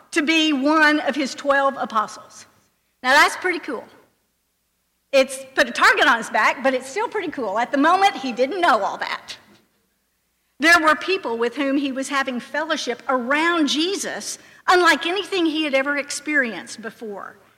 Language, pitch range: English, 240-305 Hz